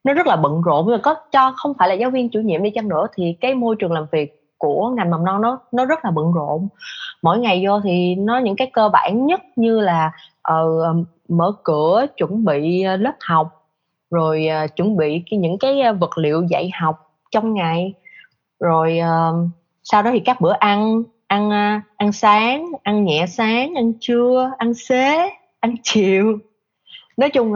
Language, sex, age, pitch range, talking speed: Vietnamese, female, 20-39, 165-235 Hz, 190 wpm